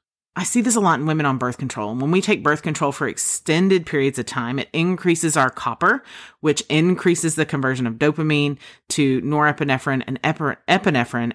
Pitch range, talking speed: 125-155 Hz, 185 wpm